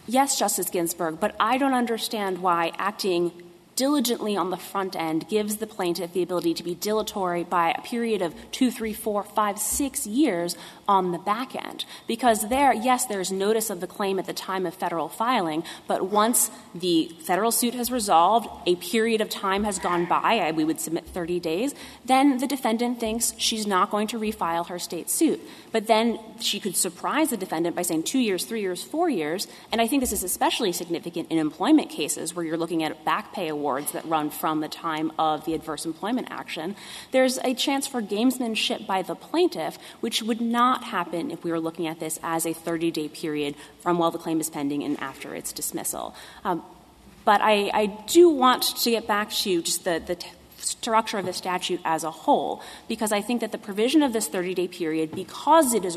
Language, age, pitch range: English, 30-49, 170-230 Hz